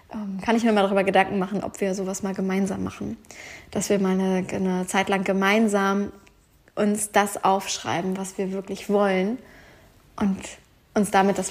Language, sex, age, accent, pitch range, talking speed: German, female, 20-39, German, 195-215 Hz, 165 wpm